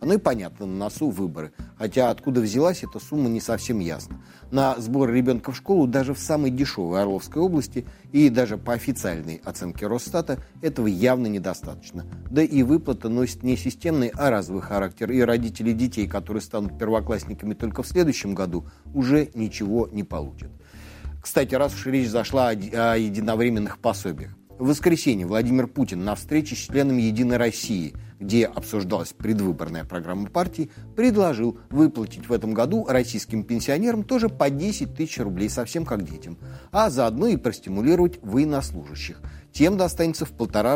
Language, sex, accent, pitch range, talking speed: Russian, male, native, 95-130 Hz, 155 wpm